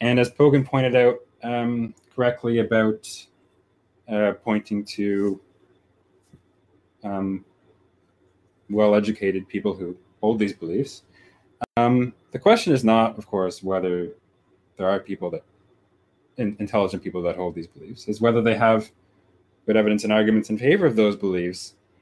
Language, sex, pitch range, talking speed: English, male, 95-120 Hz, 135 wpm